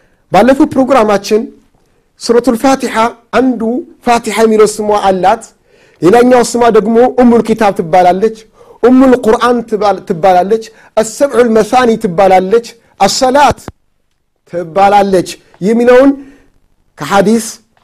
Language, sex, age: Amharic, male, 50-69